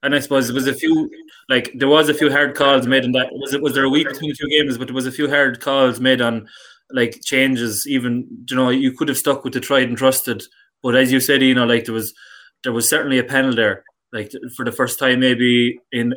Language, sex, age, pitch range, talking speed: English, male, 20-39, 125-145 Hz, 270 wpm